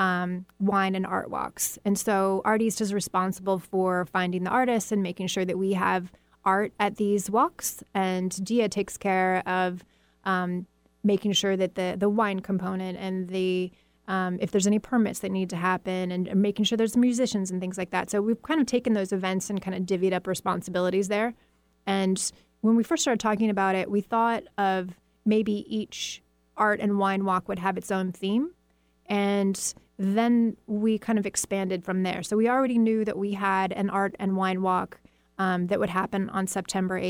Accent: American